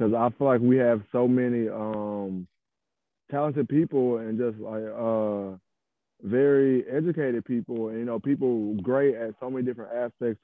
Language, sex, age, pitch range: English, male, 20-39, 110-125 Hz